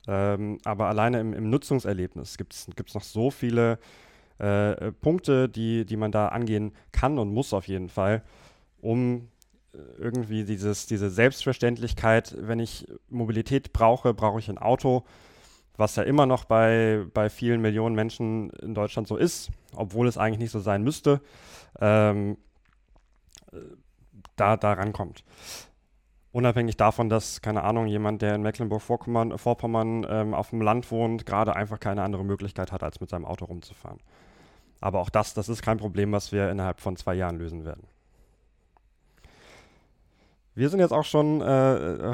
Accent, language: German, German